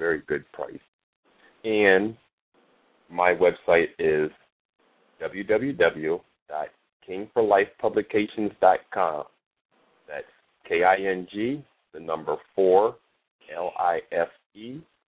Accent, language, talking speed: American, English, 55 wpm